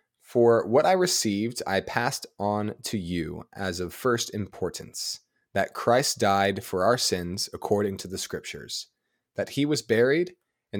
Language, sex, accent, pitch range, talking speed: English, male, American, 95-115 Hz, 155 wpm